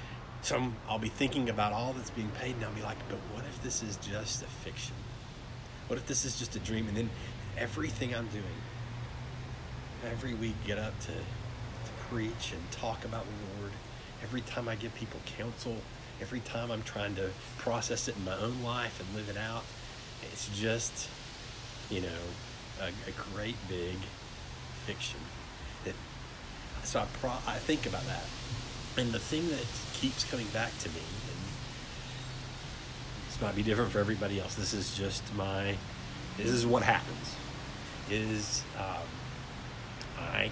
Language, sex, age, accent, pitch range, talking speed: English, male, 40-59, American, 110-125 Hz, 160 wpm